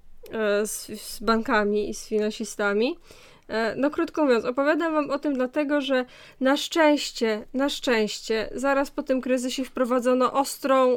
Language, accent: Polish, native